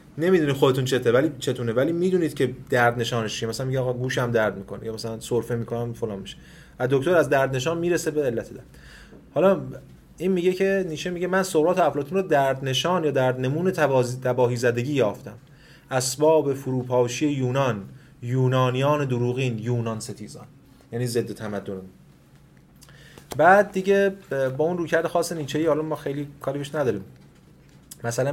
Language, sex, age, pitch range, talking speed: Persian, male, 30-49, 120-150 Hz, 155 wpm